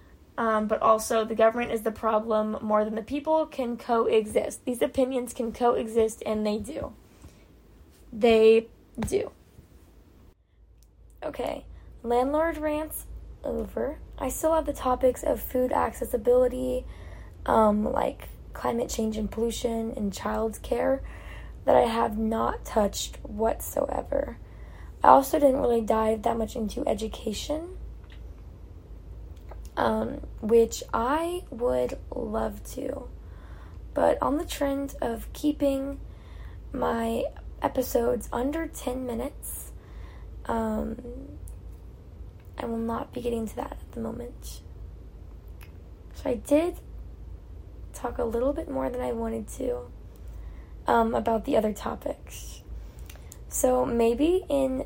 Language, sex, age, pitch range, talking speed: English, female, 10-29, 210-255 Hz, 115 wpm